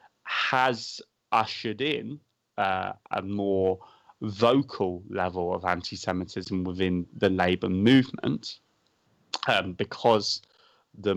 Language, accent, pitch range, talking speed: English, British, 90-110 Hz, 90 wpm